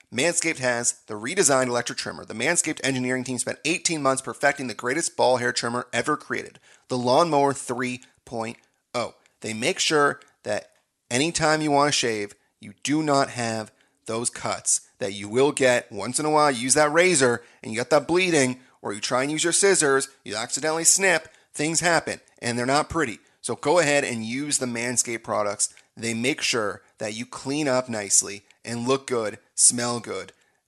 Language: English